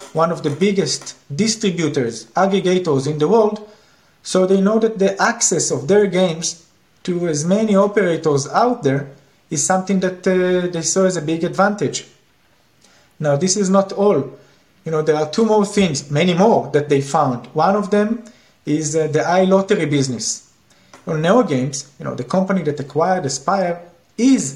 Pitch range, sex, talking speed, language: 145-205 Hz, male, 170 wpm, English